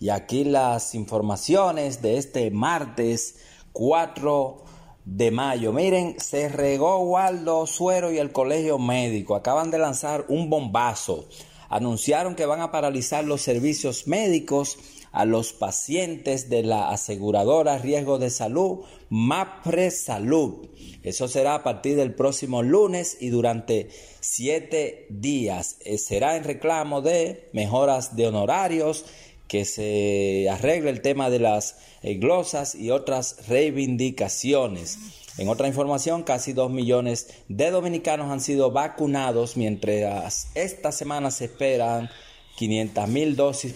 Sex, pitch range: male, 120-155 Hz